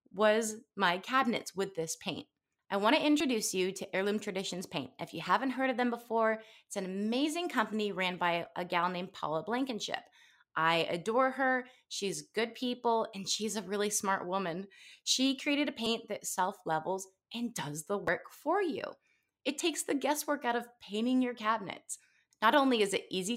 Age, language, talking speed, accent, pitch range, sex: 20-39, English, 185 wpm, American, 190-255 Hz, female